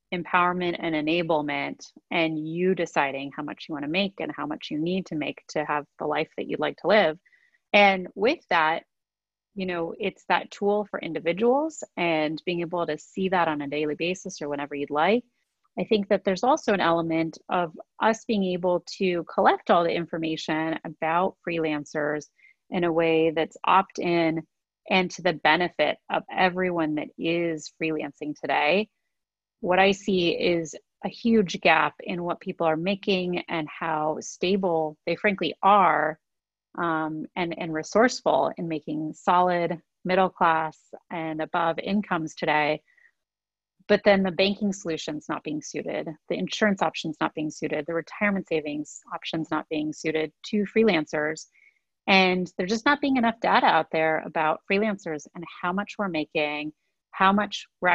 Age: 30-49